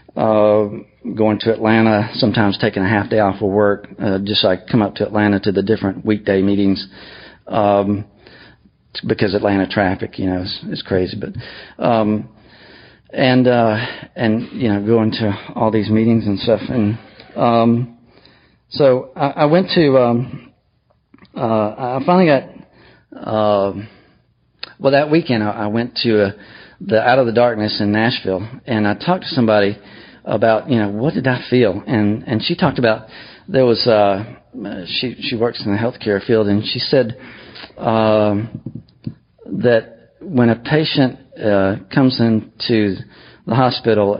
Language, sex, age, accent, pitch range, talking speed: English, male, 40-59, American, 105-120 Hz, 155 wpm